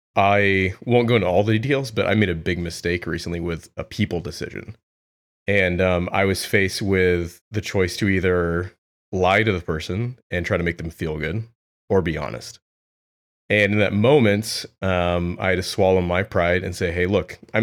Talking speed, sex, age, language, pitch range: 195 wpm, male, 30-49, English, 85-105 Hz